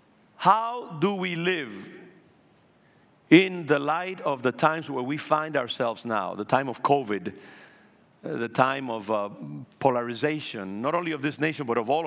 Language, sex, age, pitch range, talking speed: English, male, 50-69, 120-165 Hz, 160 wpm